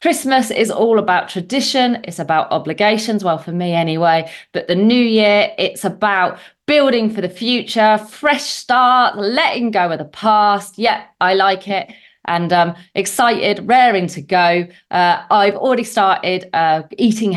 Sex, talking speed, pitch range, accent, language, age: female, 155 wpm, 165-220 Hz, British, English, 30-49